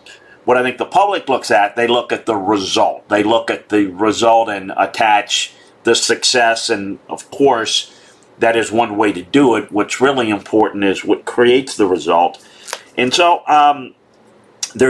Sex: male